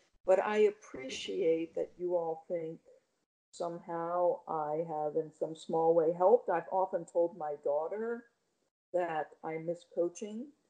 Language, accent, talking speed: English, American, 135 wpm